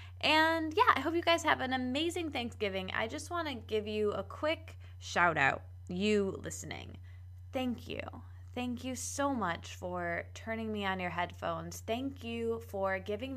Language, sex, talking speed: English, female, 170 wpm